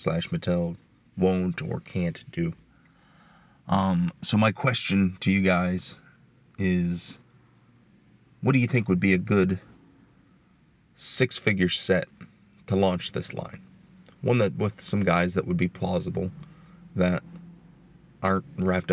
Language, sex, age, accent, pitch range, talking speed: English, male, 30-49, American, 90-125 Hz, 125 wpm